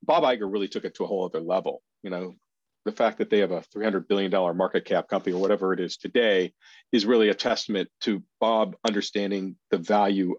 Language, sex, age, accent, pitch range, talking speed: English, male, 40-59, American, 100-120 Hz, 215 wpm